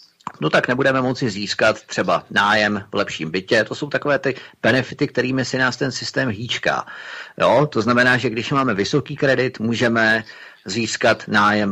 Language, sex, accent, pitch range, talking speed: Czech, male, native, 100-125 Hz, 160 wpm